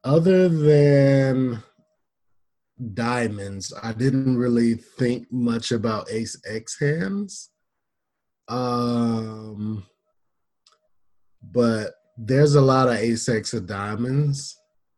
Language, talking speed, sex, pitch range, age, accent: English, 80 wpm, male, 110-135 Hz, 20-39, American